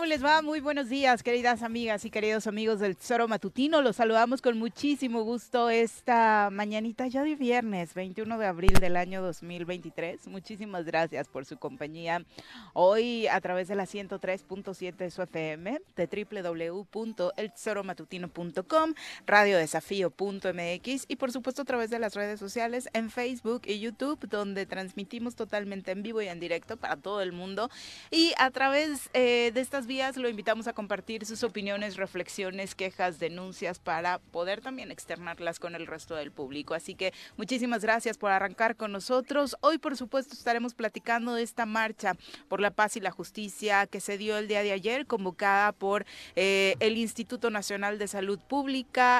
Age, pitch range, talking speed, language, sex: 30-49, 185-240 Hz, 165 wpm, Spanish, female